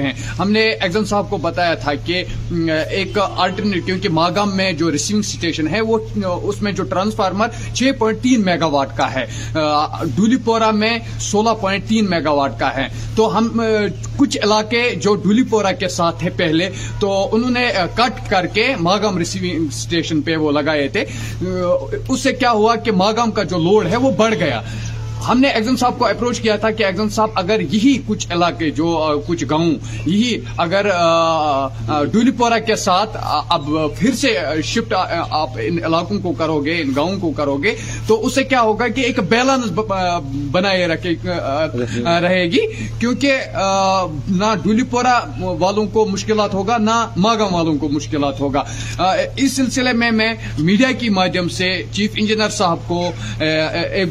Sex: male